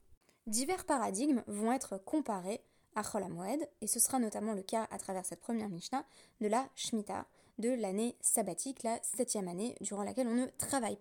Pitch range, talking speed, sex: 205-250 Hz, 175 wpm, female